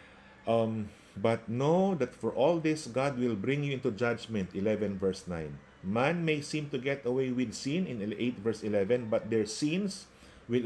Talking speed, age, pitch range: 180 wpm, 50-69, 105-165 Hz